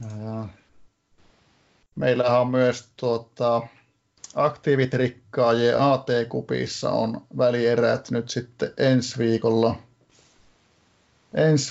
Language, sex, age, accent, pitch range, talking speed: Finnish, male, 30-49, native, 115-130 Hz, 70 wpm